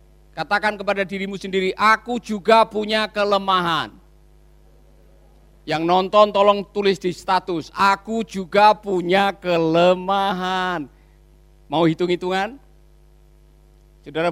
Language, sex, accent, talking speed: Indonesian, male, native, 90 wpm